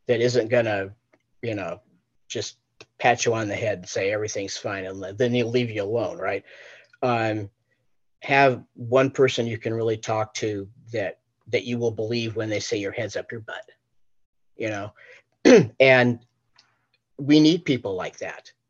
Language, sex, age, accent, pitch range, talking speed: English, male, 40-59, American, 120-155 Hz, 170 wpm